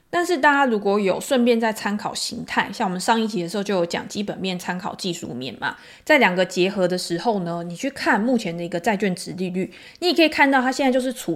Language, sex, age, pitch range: Chinese, female, 20-39, 180-250 Hz